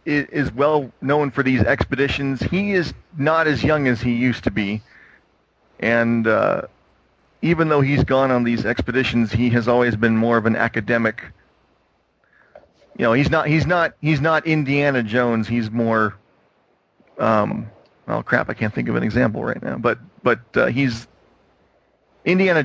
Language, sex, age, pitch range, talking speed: English, male, 40-59, 115-145 Hz, 160 wpm